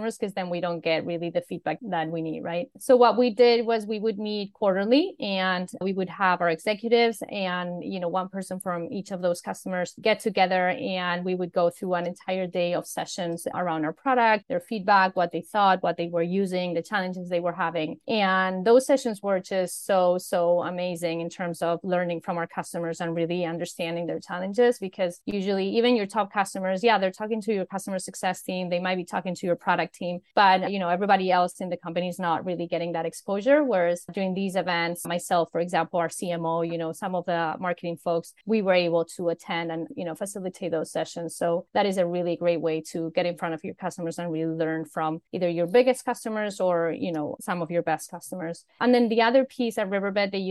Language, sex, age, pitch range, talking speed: English, female, 30-49, 175-210 Hz, 220 wpm